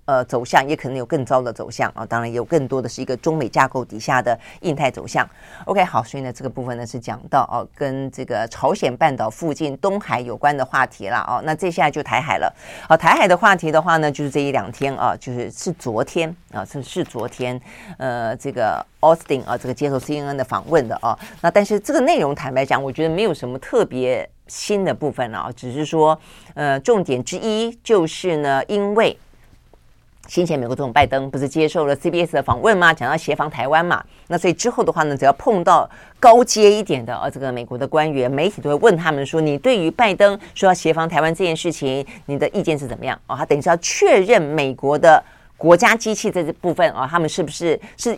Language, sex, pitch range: Chinese, female, 135-175 Hz